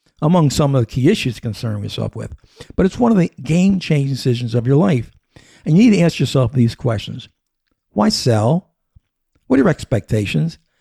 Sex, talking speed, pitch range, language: male, 185 wpm, 120-165 Hz, English